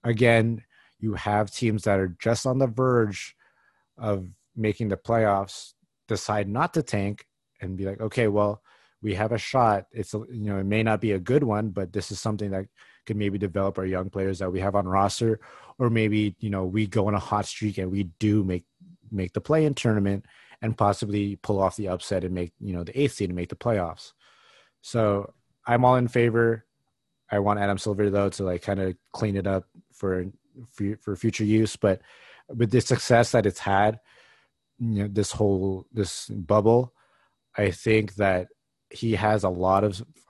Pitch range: 95-110 Hz